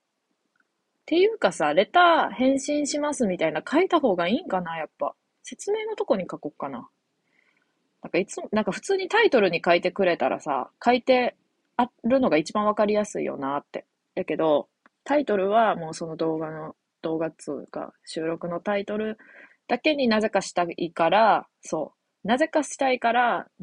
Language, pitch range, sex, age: Japanese, 170-290 Hz, female, 20-39